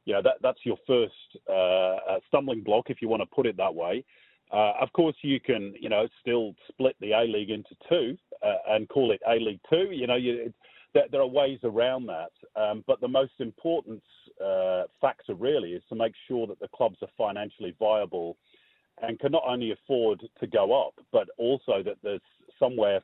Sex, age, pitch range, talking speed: male, 40-59, 100-135 Hz, 205 wpm